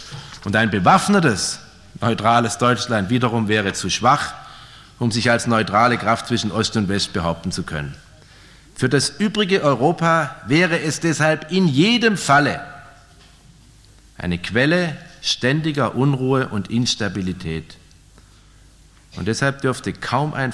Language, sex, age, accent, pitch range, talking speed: German, male, 50-69, German, 95-140 Hz, 125 wpm